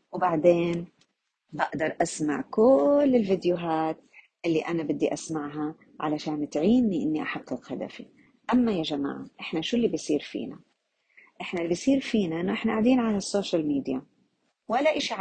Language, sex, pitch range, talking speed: Arabic, female, 170-225 Hz, 135 wpm